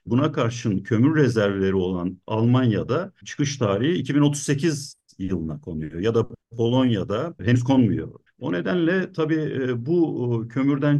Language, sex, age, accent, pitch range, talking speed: Turkish, male, 50-69, native, 110-145 Hz, 115 wpm